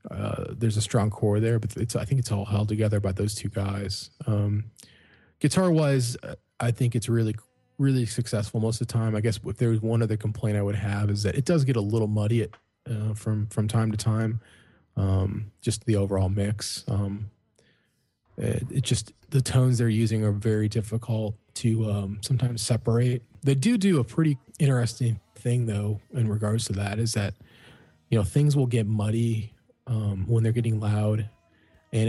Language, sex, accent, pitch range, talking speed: English, male, American, 105-120 Hz, 190 wpm